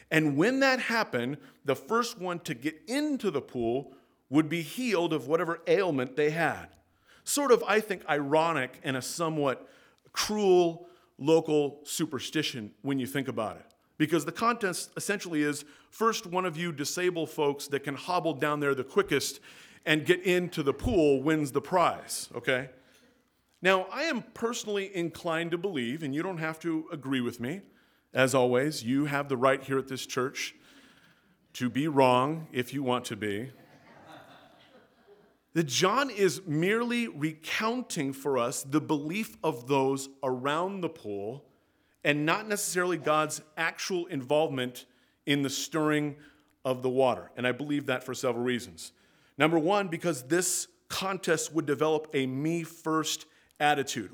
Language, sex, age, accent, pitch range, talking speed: English, male, 40-59, American, 135-180 Hz, 155 wpm